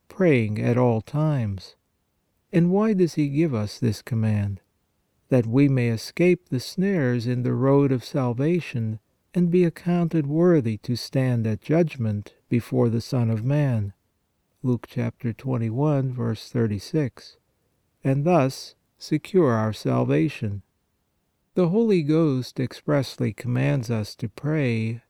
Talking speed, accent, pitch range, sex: 130 wpm, American, 115-155 Hz, male